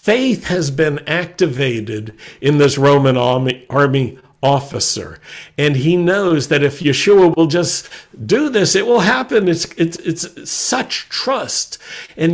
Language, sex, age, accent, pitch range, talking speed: English, male, 60-79, American, 135-180 Hz, 140 wpm